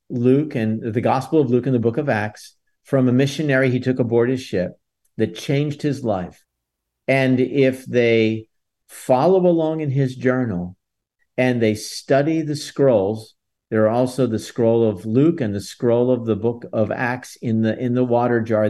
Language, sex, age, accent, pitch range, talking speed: English, male, 50-69, American, 110-145 Hz, 185 wpm